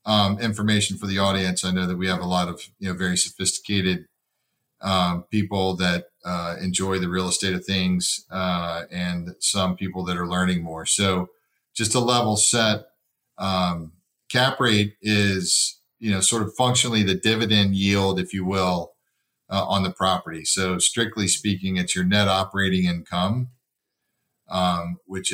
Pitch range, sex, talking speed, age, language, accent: 90-105 Hz, male, 165 wpm, 40-59, English, American